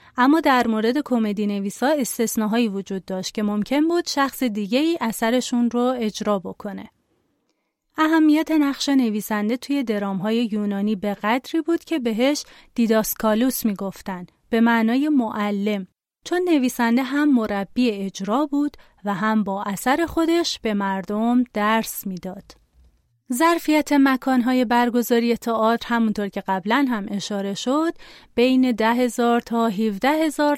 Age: 30-49